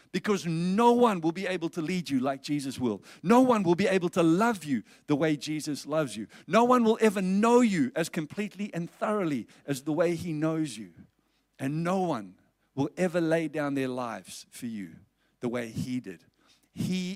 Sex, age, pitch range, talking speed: male, 50-69, 150-210 Hz, 200 wpm